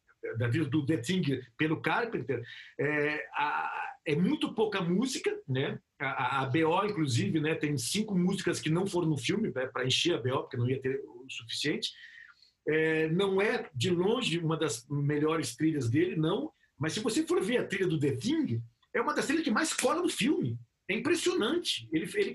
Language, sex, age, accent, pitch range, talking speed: Portuguese, male, 50-69, Brazilian, 150-235 Hz, 195 wpm